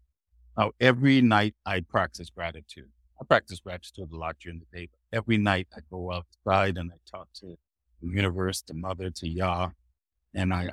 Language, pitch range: English, 65-105 Hz